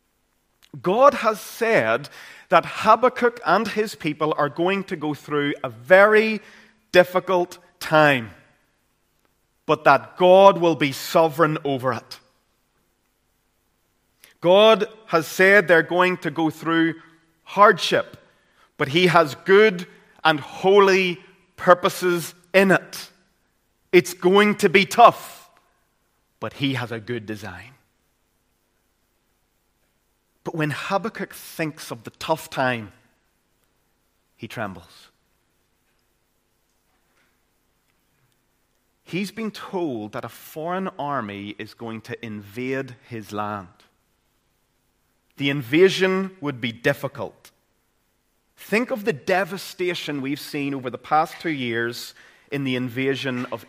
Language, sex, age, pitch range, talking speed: English, male, 30-49, 120-185 Hz, 110 wpm